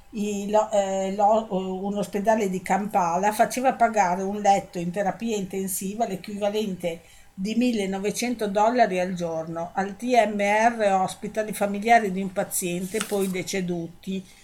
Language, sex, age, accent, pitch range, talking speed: Italian, female, 50-69, native, 185-215 Hz, 130 wpm